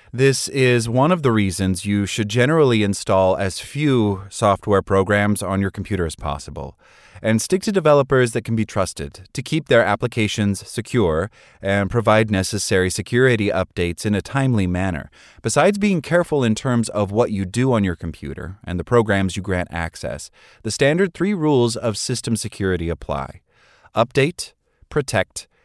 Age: 30-49